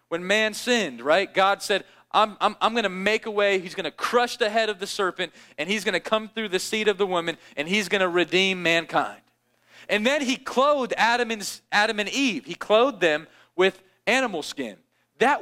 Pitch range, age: 170-220 Hz, 40-59